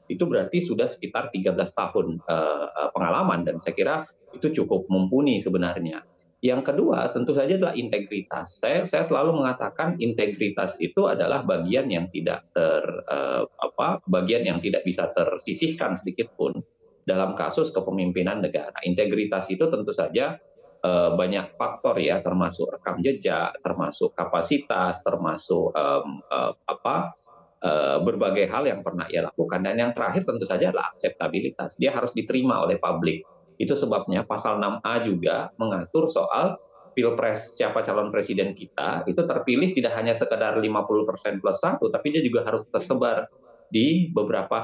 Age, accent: 30-49, native